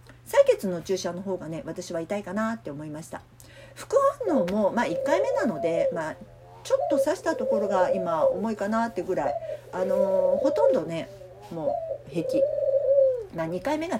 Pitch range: 180-280 Hz